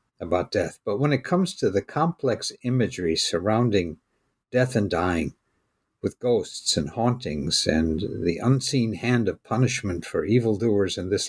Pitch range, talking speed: 105-145 Hz, 150 wpm